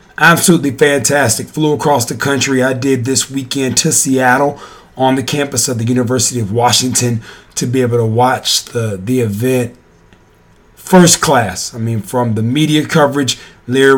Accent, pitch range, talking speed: American, 120-140 Hz, 160 wpm